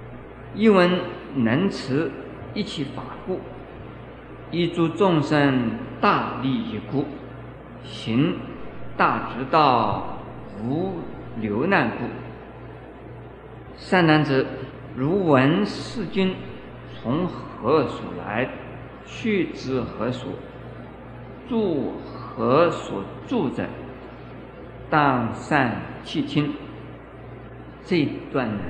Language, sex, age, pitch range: Chinese, male, 50-69, 120-160 Hz